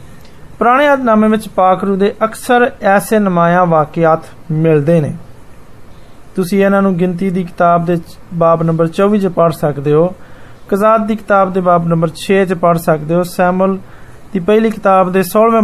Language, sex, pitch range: Hindi, male, 170-220 Hz